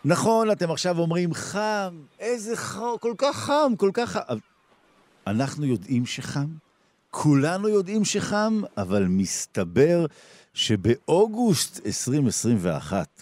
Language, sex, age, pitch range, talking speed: Hebrew, male, 50-69, 100-150 Hz, 105 wpm